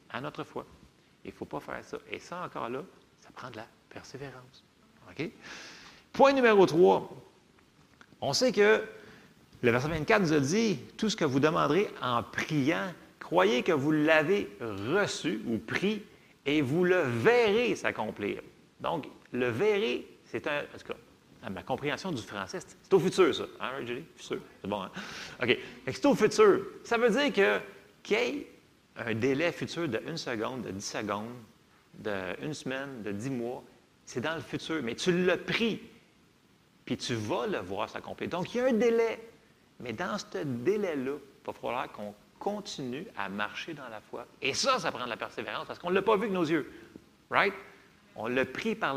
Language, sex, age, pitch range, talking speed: French, male, 40-59, 135-210 Hz, 185 wpm